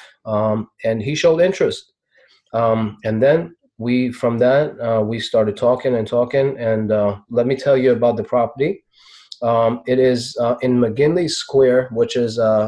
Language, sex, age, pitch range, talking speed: English, male, 30-49, 105-125 Hz, 170 wpm